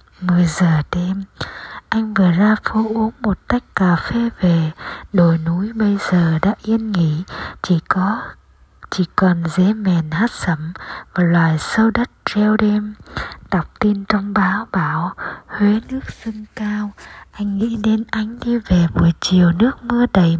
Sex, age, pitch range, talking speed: female, 20-39, 175-225 Hz, 160 wpm